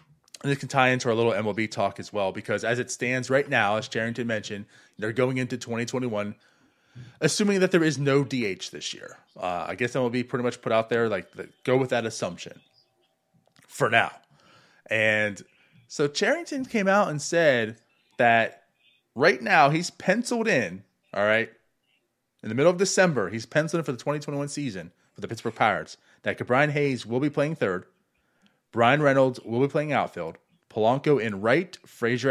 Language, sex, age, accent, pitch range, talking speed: English, male, 30-49, American, 115-155 Hz, 180 wpm